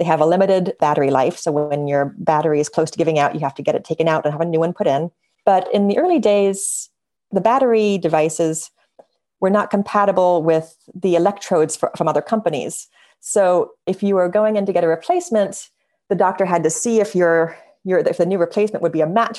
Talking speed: 215 wpm